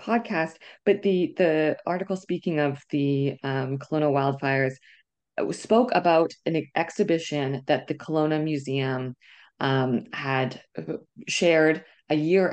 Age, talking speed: 20-39, 115 wpm